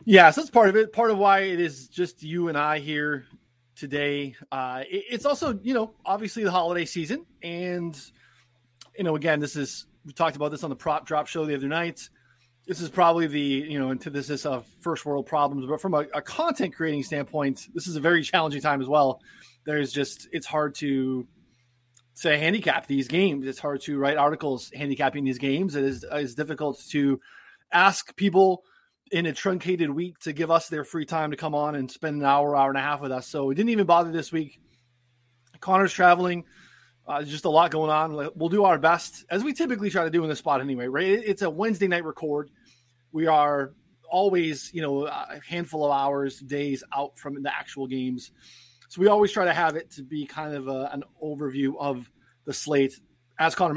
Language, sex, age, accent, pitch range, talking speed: English, male, 20-39, American, 135-170 Hz, 210 wpm